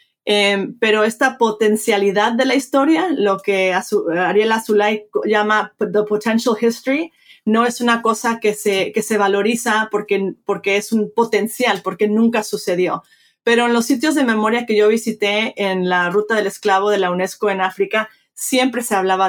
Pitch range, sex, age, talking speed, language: 200-235 Hz, female, 30-49, 170 wpm, Spanish